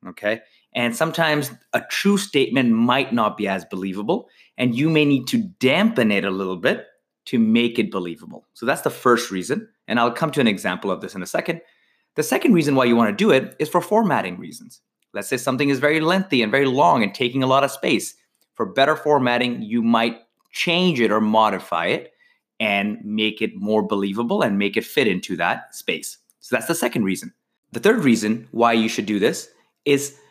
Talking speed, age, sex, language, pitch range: 210 wpm, 30-49, male, English, 105-135 Hz